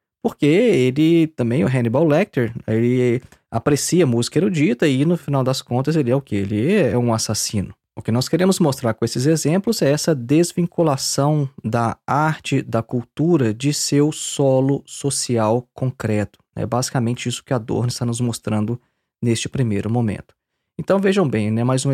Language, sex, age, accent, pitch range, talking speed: Portuguese, male, 20-39, Brazilian, 115-155 Hz, 165 wpm